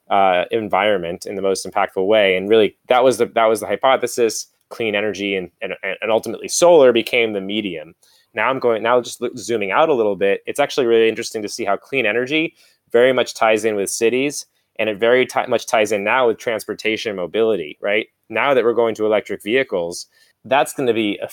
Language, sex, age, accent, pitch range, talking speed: English, male, 20-39, American, 100-125 Hz, 215 wpm